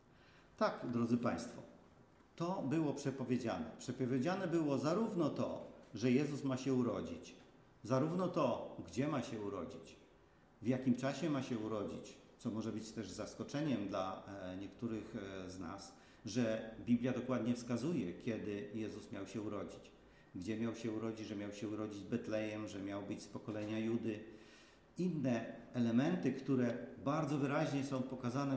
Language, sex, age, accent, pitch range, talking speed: Polish, male, 40-59, native, 110-135 Hz, 140 wpm